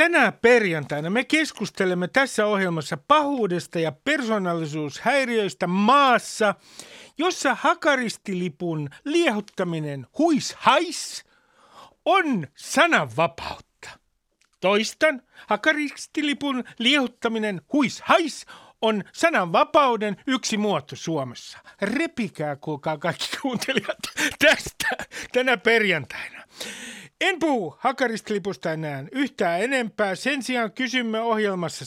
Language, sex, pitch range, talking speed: Finnish, male, 155-255 Hz, 80 wpm